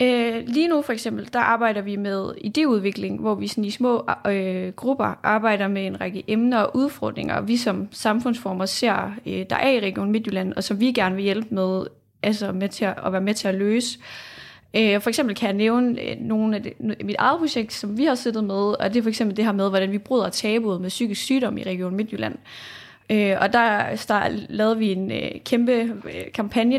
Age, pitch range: 20-39, 200-235 Hz